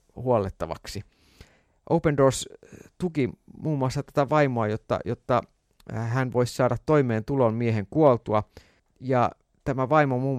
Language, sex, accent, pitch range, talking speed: Finnish, male, native, 115-150 Hz, 120 wpm